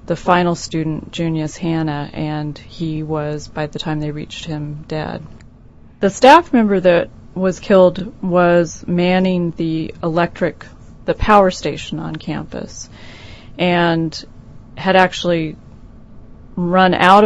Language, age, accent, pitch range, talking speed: English, 30-49, American, 150-175 Hz, 120 wpm